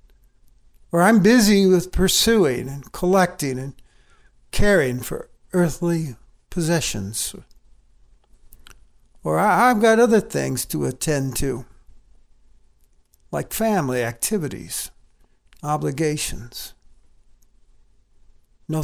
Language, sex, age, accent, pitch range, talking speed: English, male, 60-79, American, 120-180 Hz, 80 wpm